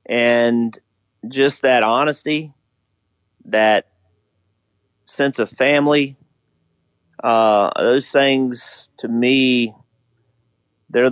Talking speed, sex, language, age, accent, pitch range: 65 wpm, male, English, 40-59, American, 105-130 Hz